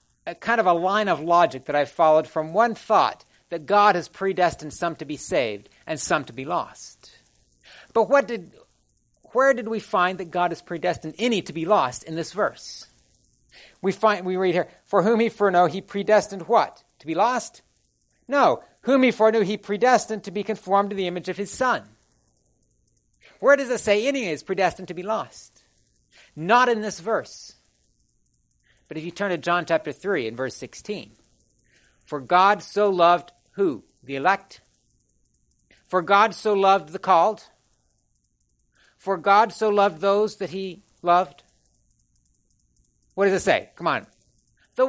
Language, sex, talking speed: English, male, 170 wpm